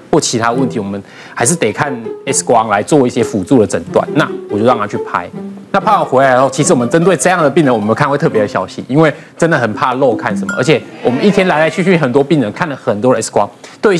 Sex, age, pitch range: male, 20-39, 120-165 Hz